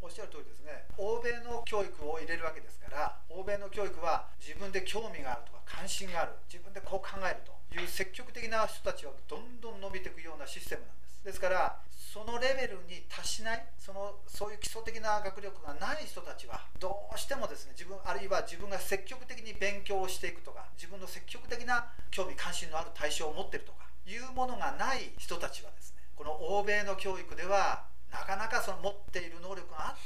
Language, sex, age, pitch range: Japanese, male, 40-59, 185-235 Hz